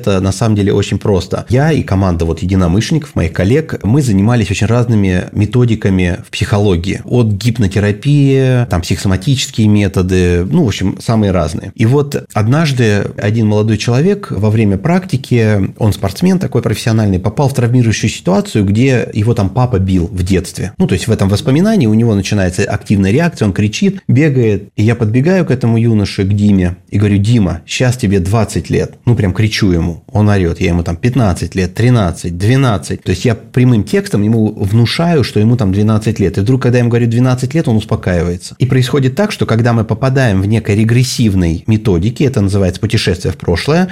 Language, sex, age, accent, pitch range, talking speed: Russian, male, 30-49, native, 100-125 Hz, 185 wpm